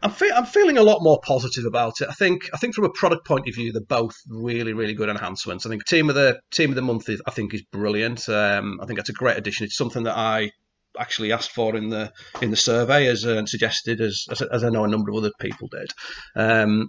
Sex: male